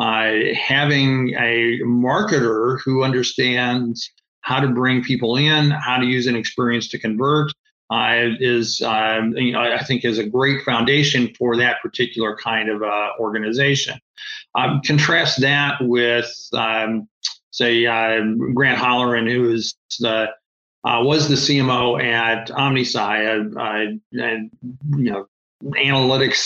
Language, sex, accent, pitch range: English, male, American, 115-130 Hz